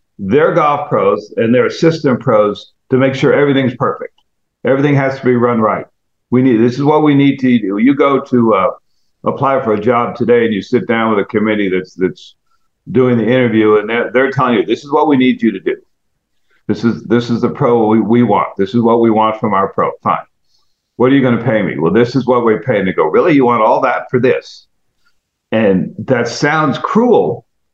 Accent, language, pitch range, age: American, English, 110-140 Hz, 50-69